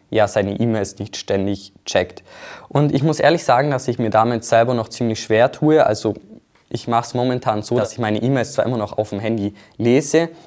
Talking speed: 210 wpm